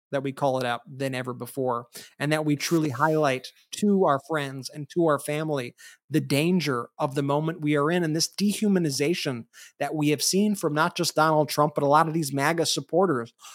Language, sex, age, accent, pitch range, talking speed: English, male, 20-39, American, 145-170 Hz, 210 wpm